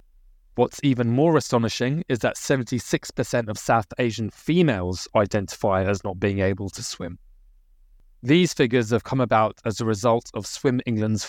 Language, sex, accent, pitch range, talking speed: English, male, British, 105-130 Hz, 155 wpm